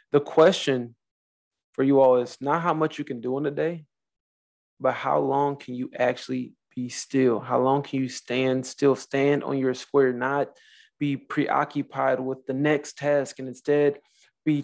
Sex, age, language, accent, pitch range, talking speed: male, 20-39, English, American, 125-140 Hz, 175 wpm